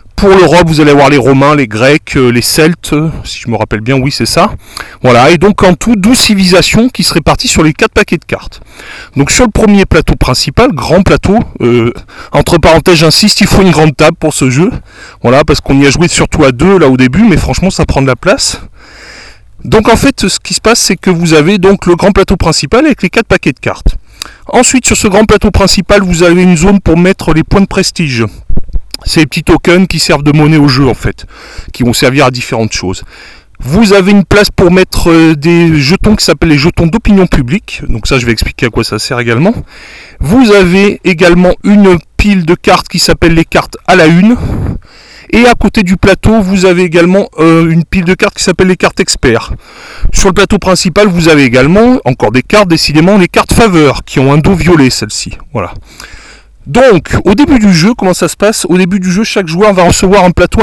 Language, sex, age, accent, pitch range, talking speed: French, male, 40-59, French, 145-200 Hz, 225 wpm